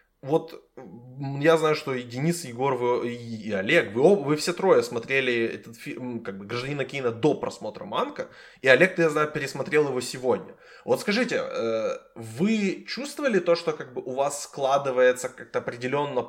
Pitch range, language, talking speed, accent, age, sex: 120-145 Hz, Ukrainian, 170 wpm, native, 20-39, male